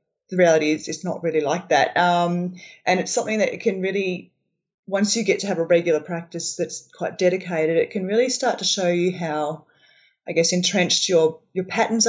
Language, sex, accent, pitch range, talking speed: English, female, Australian, 165-195 Hz, 205 wpm